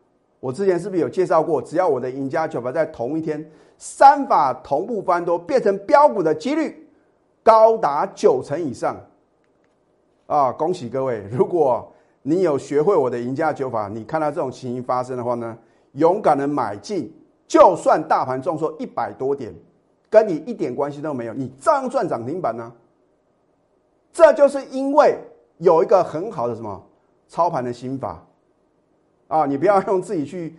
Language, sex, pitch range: Chinese, male, 125-200 Hz